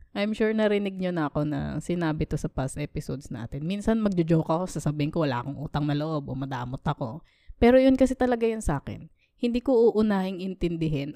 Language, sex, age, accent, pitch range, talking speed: Filipino, female, 20-39, native, 150-195 Hz, 190 wpm